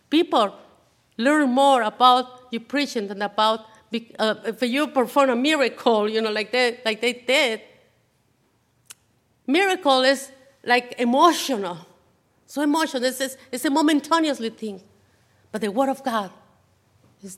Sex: female